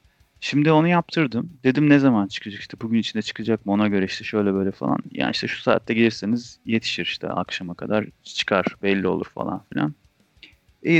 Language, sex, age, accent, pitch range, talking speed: Turkish, male, 30-49, native, 100-130 Hz, 180 wpm